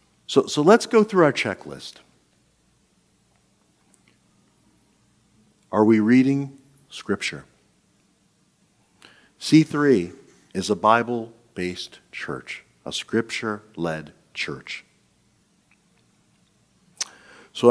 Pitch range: 100-135 Hz